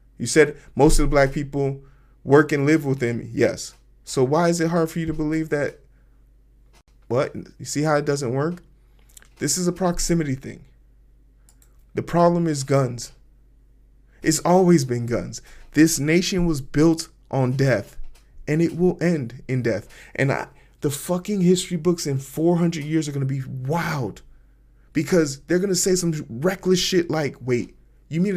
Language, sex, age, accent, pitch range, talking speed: English, male, 20-39, American, 130-170 Hz, 170 wpm